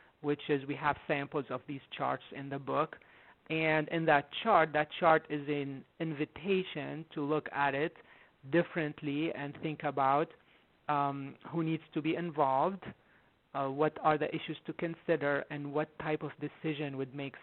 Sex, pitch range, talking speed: male, 145-165 Hz, 165 wpm